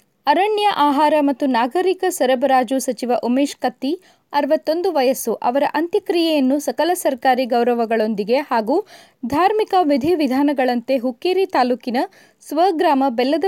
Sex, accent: female, native